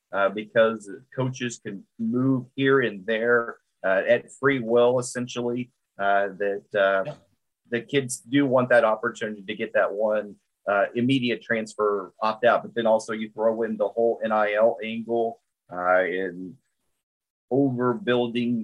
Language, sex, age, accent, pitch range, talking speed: English, male, 30-49, American, 105-130 Hz, 140 wpm